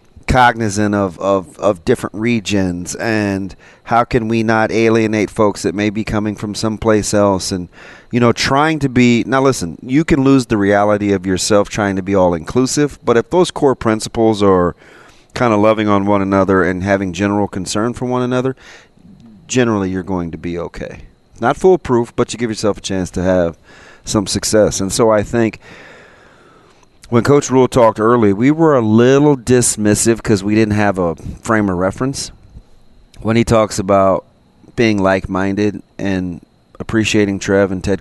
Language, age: English, 40-59